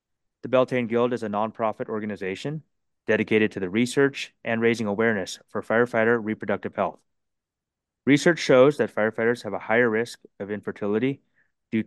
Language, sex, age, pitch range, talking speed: English, male, 30-49, 105-130 Hz, 145 wpm